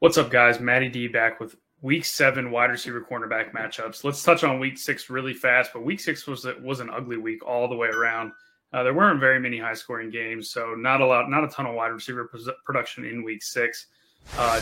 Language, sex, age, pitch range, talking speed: English, male, 20-39, 120-135 Hz, 225 wpm